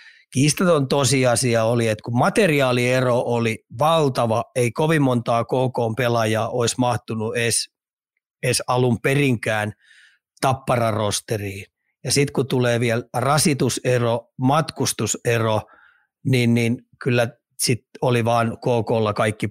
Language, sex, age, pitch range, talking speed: Finnish, male, 30-49, 115-130 Hz, 110 wpm